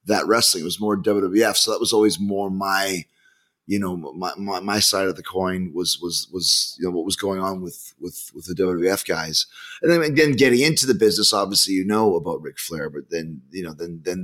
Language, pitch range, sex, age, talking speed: English, 95-110 Hz, male, 30-49, 235 wpm